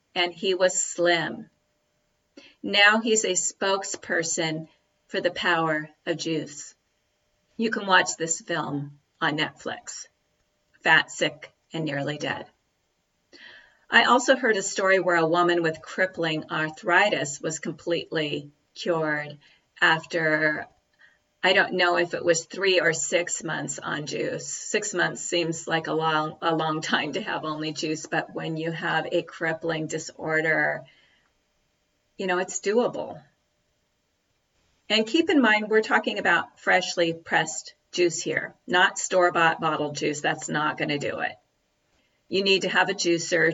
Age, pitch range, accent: 40-59, 155-185 Hz, American